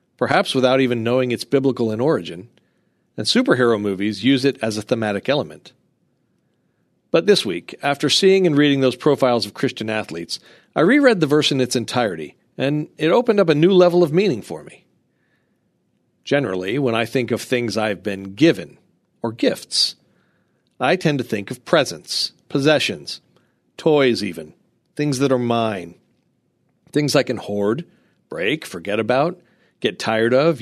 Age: 40-59